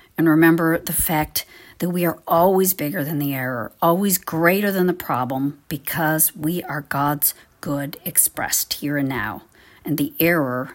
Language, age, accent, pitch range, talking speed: English, 50-69, American, 145-185 Hz, 160 wpm